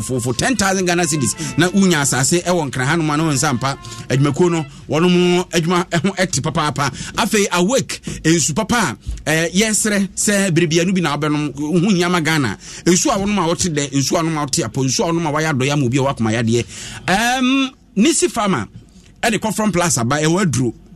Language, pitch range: English, 140-185 Hz